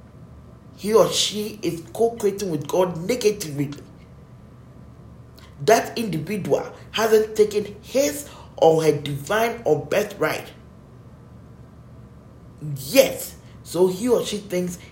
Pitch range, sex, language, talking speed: 150-215 Hz, male, English, 100 wpm